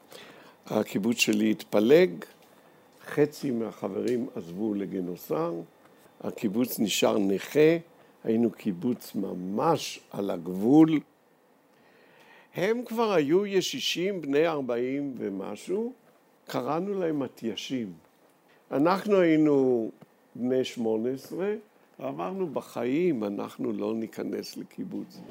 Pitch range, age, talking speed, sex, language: 115-190 Hz, 60-79, 85 wpm, male, Hebrew